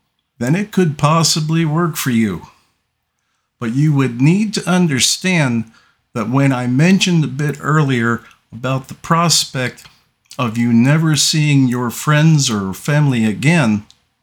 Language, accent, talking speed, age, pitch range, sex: English, American, 135 wpm, 50-69, 120-155 Hz, male